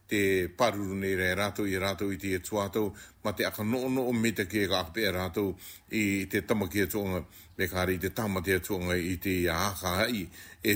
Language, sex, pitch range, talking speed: English, male, 90-105 Hz, 190 wpm